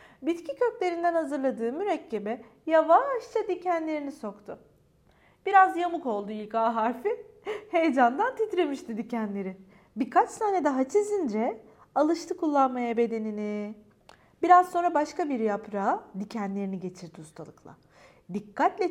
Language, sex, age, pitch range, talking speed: Turkish, female, 40-59, 205-320 Hz, 100 wpm